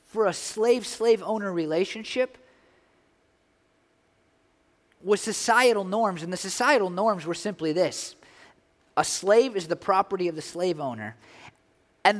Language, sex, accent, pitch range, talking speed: English, male, American, 195-295 Hz, 125 wpm